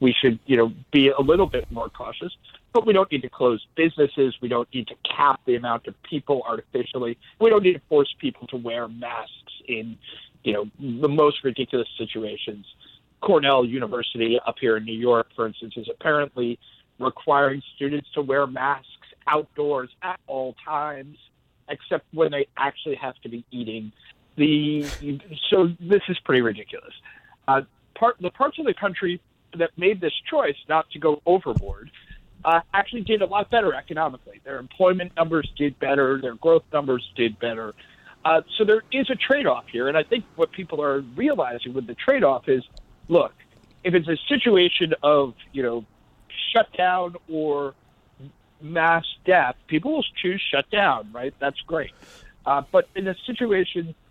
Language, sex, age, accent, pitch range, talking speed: English, male, 50-69, American, 125-175 Hz, 170 wpm